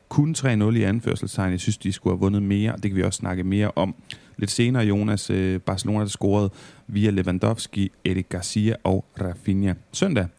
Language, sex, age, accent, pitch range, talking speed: Danish, male, 30-49, native, 95-120 Hz, 185 wpm